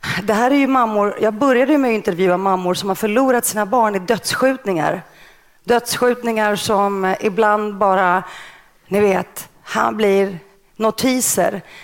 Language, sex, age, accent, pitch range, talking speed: Swedish, female, 30-49, native, 200-250 Hz, 130 wpm